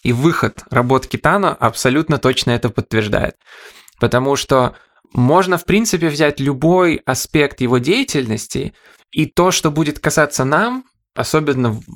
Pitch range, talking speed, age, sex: 120-155 Hz, 125 wpm, 20-39, male